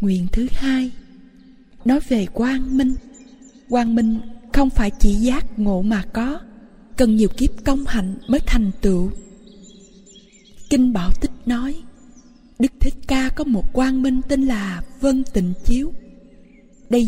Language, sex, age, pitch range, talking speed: Vietnamese, female, 20-39, 210-255 Hz, 145 wpm